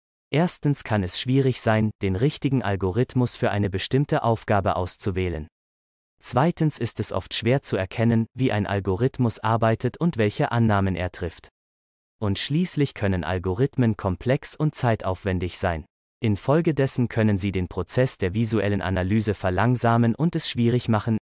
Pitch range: 100-125 Hz